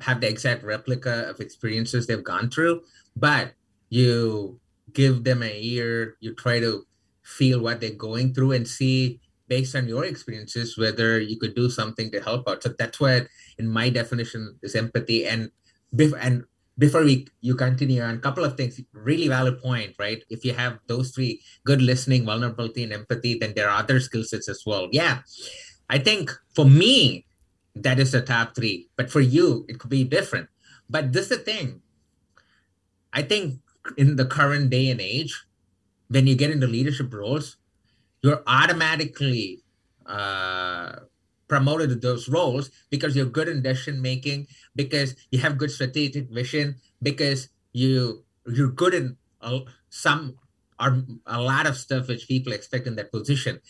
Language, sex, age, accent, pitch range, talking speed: English, male, 30-49, Indian, 115-135 Hz, 170 wpm